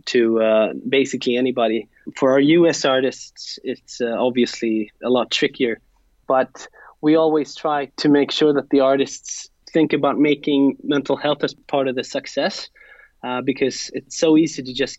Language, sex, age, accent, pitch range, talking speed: English, male, 20-39, Swedish, 130-155 Hz, 165 wpm